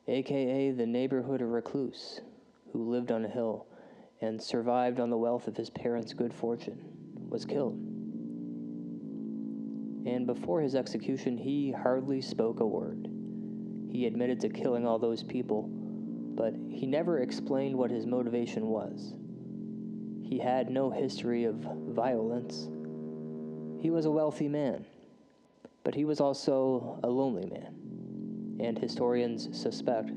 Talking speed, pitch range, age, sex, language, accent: 135 wpm, 115-175 Hz, 20-39, male, English, American